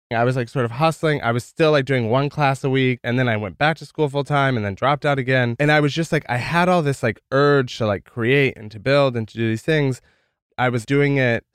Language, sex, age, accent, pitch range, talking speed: English, male, 20-39, American, 105-135 Hz, 285 wpm